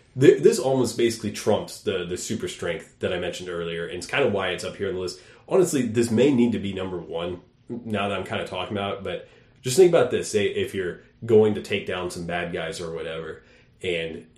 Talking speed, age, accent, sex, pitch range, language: 240 wpm, 30-49, American, male, 90-120 Hz, English